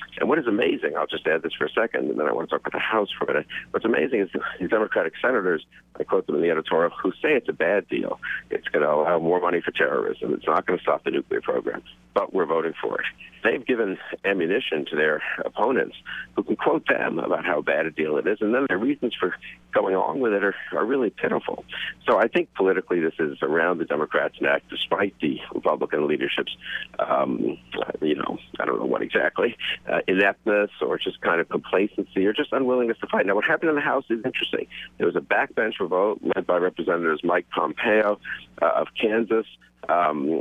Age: 60-79